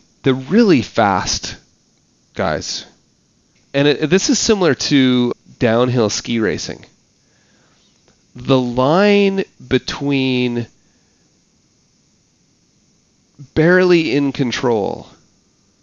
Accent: American